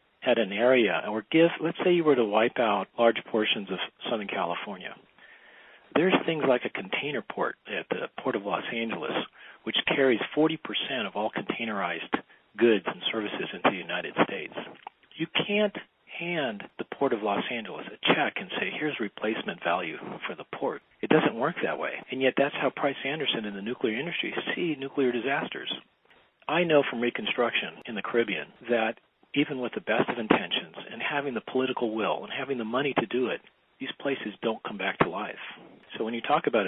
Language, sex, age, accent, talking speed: English, male, 40-59, American, 190 wpm